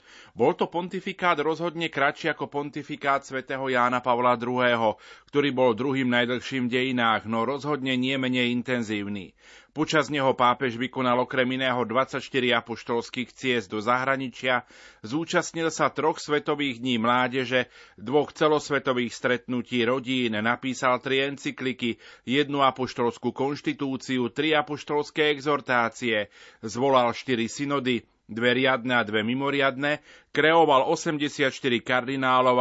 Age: 30-49